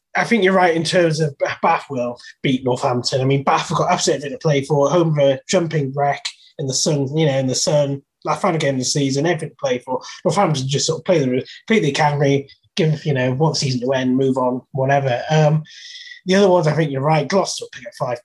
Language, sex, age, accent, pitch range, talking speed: English, male, 20-39, British, 140-180 Hz, 255 wpm